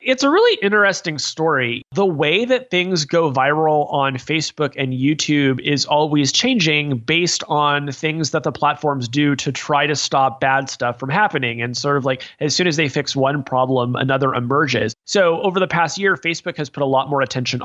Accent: American